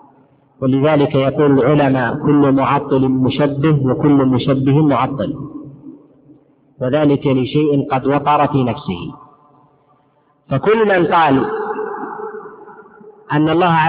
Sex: male